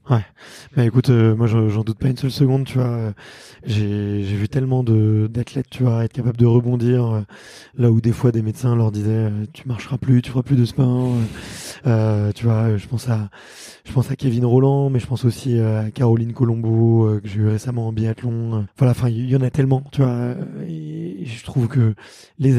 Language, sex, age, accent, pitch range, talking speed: French, male, 20-39, French, 115-130 Hz, 235 wpm